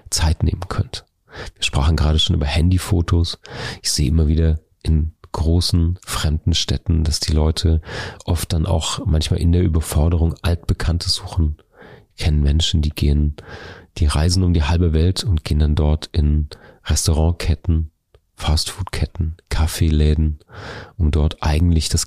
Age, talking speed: 40-59, 140 wpm